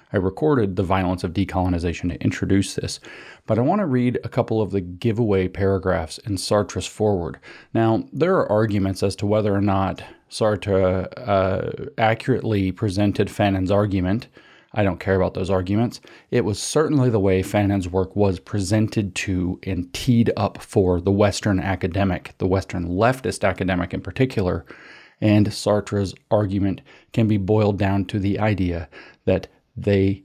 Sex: male